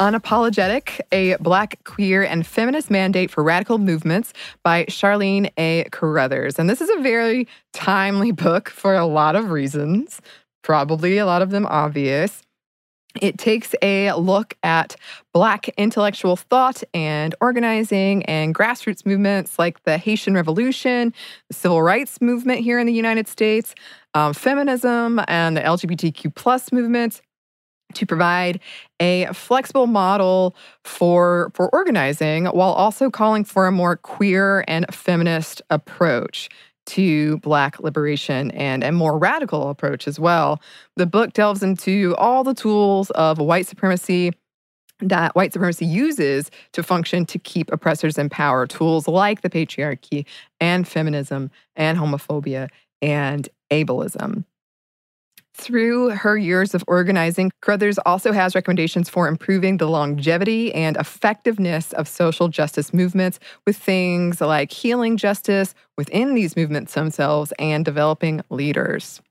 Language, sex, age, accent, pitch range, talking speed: English, female, 20-39, American, 160-210 Hz, 135 wpm